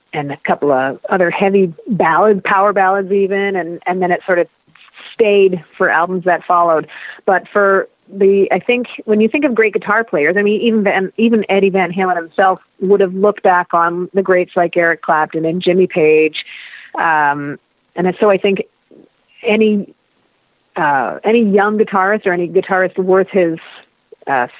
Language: English